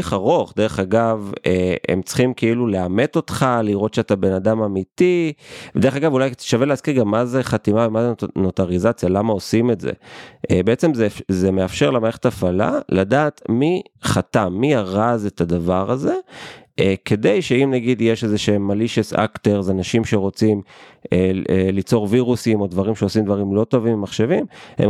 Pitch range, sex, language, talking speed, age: 95-125 Hz, male, Hebrew, 155 wpm, 30-49